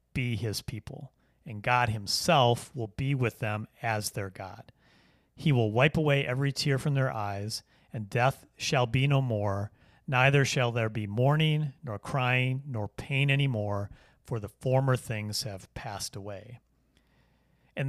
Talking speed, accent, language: 160 wpm, American, English